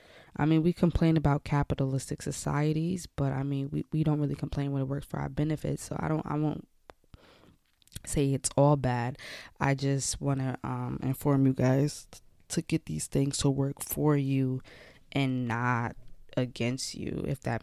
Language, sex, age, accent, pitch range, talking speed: English, female, 20-39, American, 135-155 Hz, 175 wpm